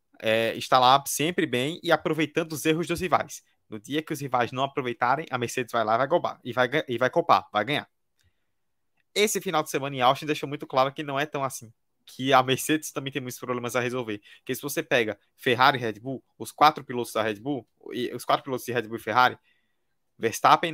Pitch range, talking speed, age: 120-155 Hz, 230 wpm, 20-39